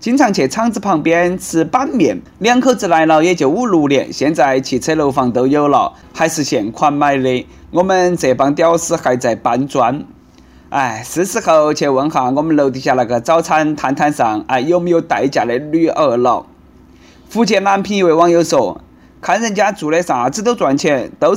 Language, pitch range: Chinese, 130-190 Hz